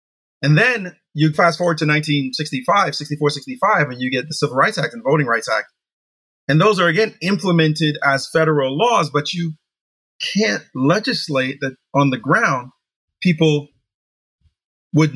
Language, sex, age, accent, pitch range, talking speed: English, male, 30-49, American, 120-160 Hz, 150 wpm